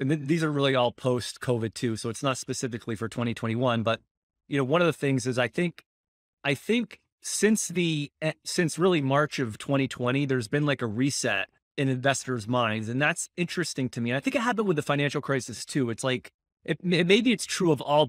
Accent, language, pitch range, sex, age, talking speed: American, English, 125-155 Hz, male, 30-49, 210 wpm